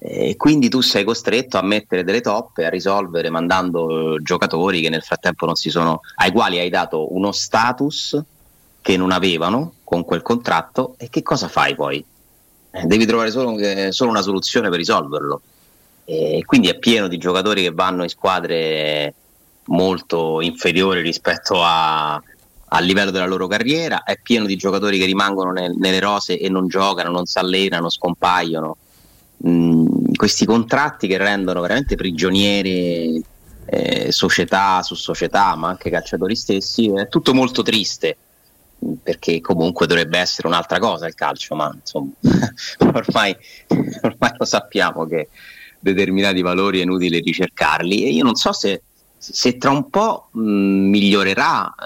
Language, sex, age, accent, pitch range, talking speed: Italian, male, 30-49, native, 90-110 Hz, 145 wpm